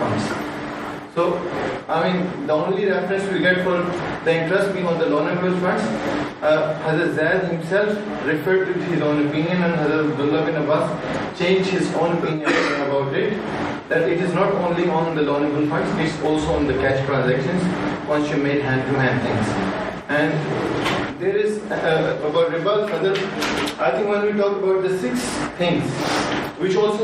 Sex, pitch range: male, 150-190 Hz